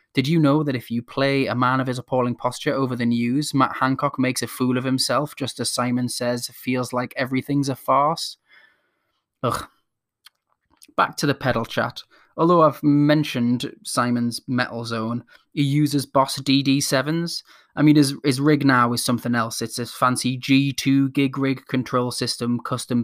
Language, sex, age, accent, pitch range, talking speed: English, male, 20-39, British, 120-140 Hz, 170 wpm